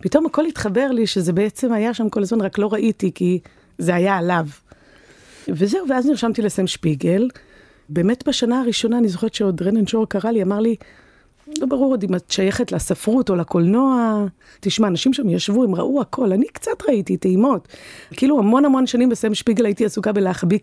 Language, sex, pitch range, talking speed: Hebrew, female, 185-235 Hz, 185 wpm